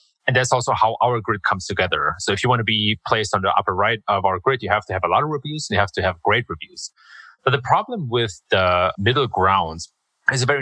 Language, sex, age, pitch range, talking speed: English, male, 30-49, 95-125 Hz, 265 wpm